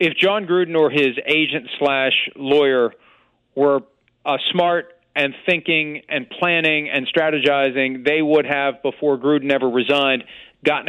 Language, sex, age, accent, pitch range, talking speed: English, male, 40-59, American, 130-150 Hz, 140 wpm